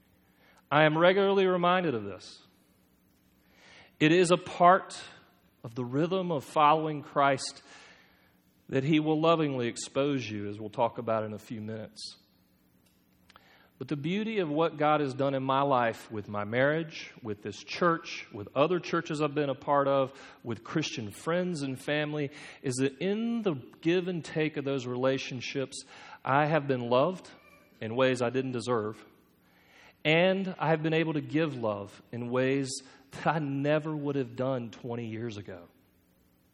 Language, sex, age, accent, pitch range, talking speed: English, male, 40-59, American, 125-160 Hz, 160 wpm